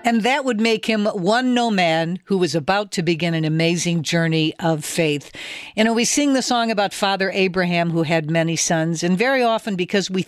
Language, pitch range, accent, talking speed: English, 165-210 Hz, American, 210 wpm